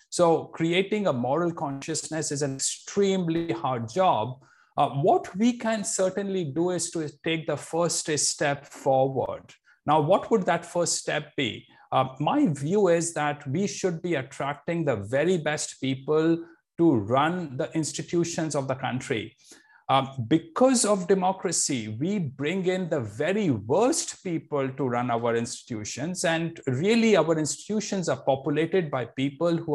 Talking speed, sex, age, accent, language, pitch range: 150 wpm, male, 50-69, Indian, English, 135-185 Hz